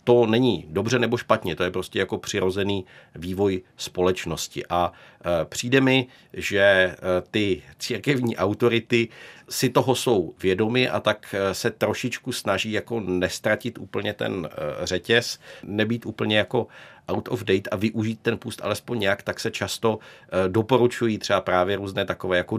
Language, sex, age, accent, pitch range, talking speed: Czech, male, 50-69, native, 90-110 Hz, 145 wpm